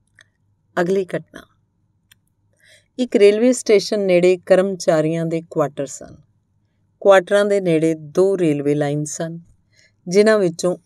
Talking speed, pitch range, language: 105 wpm, 150-195 Hz, Punjabi